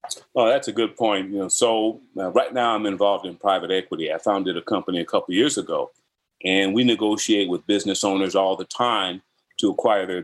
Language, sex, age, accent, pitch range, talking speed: English, male, 40-59, American, 95-130 Hz, 210 wpm